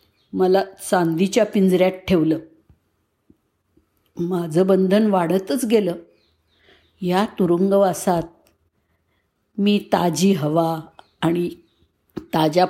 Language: Marathi